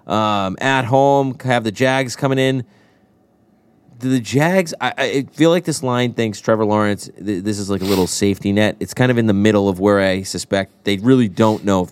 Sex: male